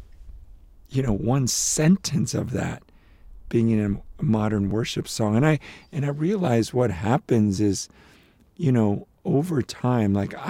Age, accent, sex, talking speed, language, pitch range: 50-69, American, male, 145 wpm, English, 95-125 Hz